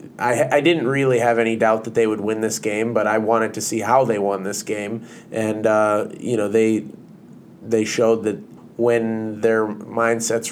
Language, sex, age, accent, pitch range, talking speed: English, male, 20-39, American, 105-120 Hz, 195 wpm